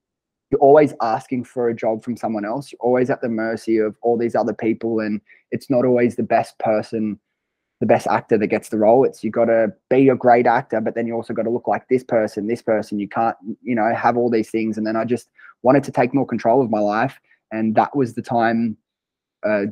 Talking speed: 235 wpm